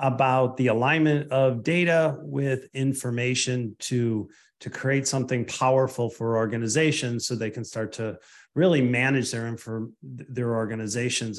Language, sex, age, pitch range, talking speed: English, male, 40-59, 120-145 Hz, 125 wpm